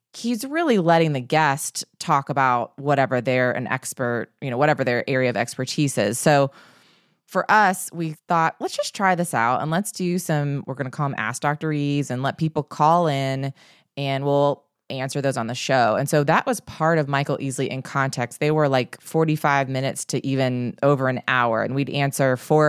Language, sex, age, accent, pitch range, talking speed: English, female, 20-39, American, 130-165 Hz, 200 wpm